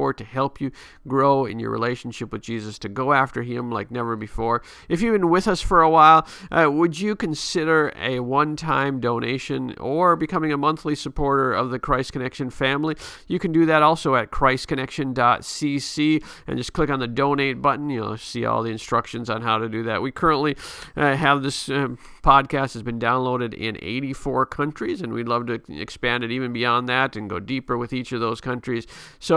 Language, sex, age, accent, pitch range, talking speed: English, male, 50-69, American, 120-145 Hz, 200 wpm